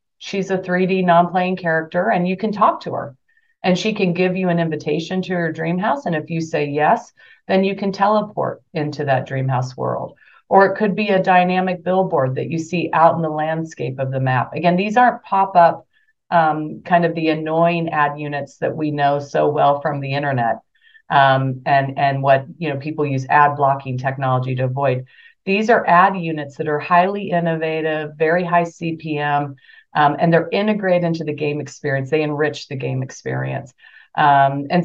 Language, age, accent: English, 40-59, American